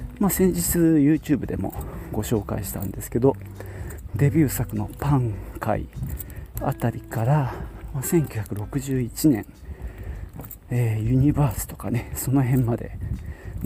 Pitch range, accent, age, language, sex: 100-135 Hz, native, 40-59, Japanese, male